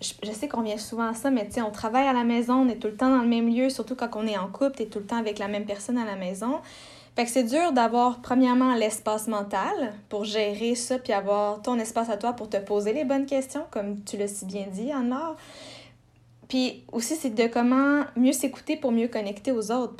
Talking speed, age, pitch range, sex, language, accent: 250 wpm, 20-39, 215-265 Hz, female, French, Canadian